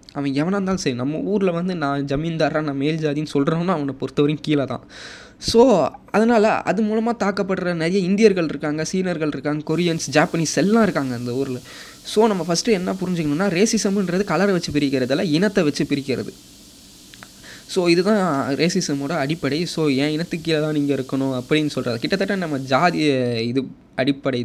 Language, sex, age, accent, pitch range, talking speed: Tamil, male, 20-39, native, 145-195 Hz, 155 wpm